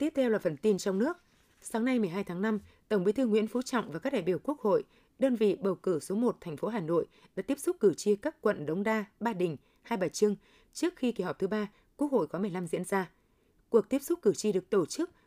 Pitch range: 180-240 Hz